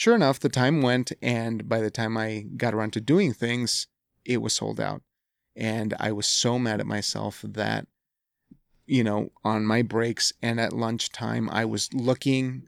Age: 30-49